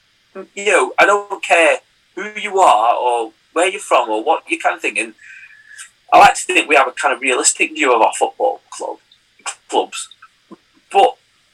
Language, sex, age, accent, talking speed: English, male, 30-49, British, 175 wpm